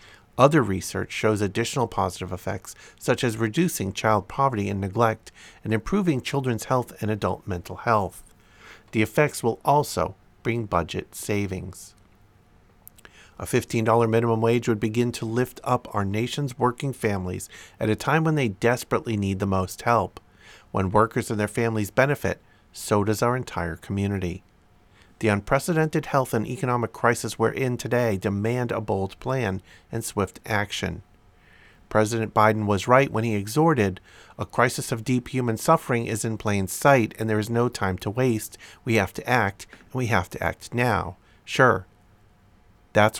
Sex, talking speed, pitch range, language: male, 160 wpm, 95-120 Hz, English